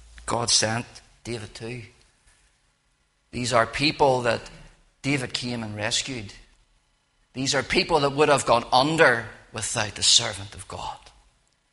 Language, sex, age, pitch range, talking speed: English, male, 40-59, 110-140 Hz, 130 wpm